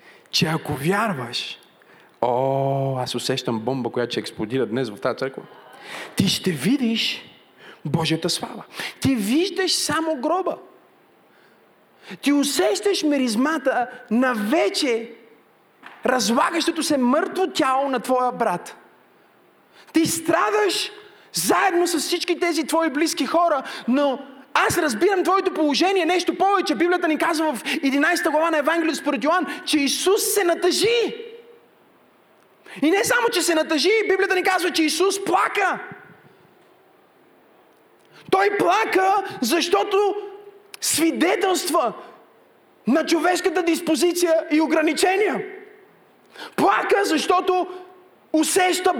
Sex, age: male, 30-49